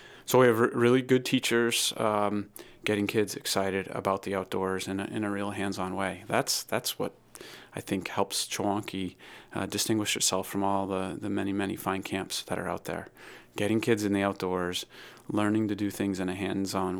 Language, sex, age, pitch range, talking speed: English, male, 30-49, 95-105 Hz, 195 wpm